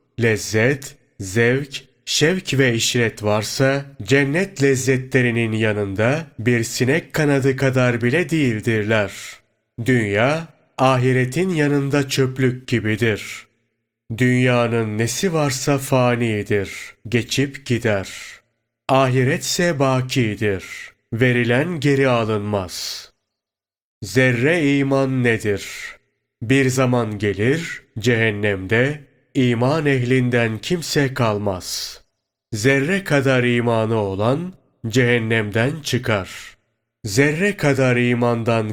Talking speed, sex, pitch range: 80 wpm, male, 115-135 Hz